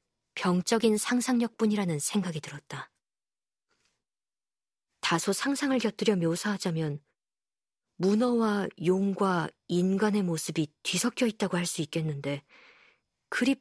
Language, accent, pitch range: Korean, native, 170-225 Hz